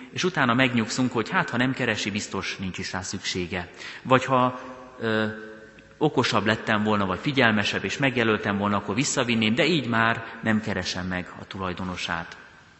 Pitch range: 95-115 Hz